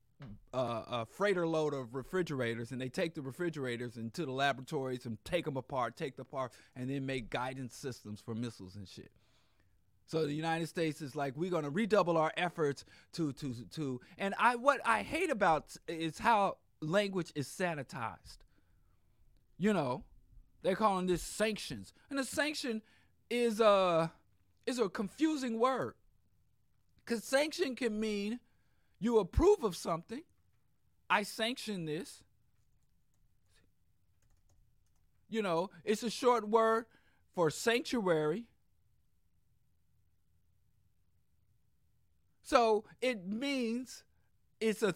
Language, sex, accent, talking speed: English, male, American, 125 wpm